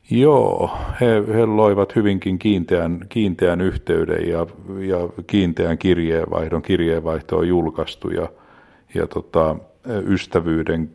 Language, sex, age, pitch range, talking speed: Finnish, male, 50-69, 80-85 Hz, 105 wpm